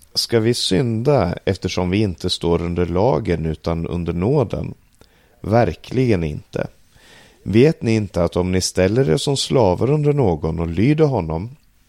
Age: 30-49